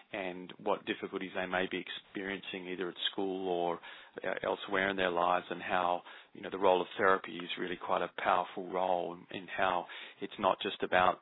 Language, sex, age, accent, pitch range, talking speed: English, male, 30-49, Australian, 95-105 Hz, 185 wpm